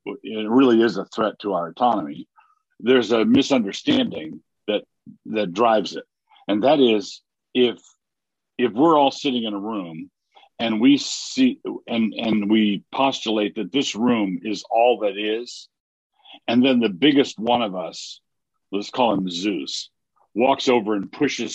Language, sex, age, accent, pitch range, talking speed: English, male, 50-69, American, 110-145 Hz, 155 wpm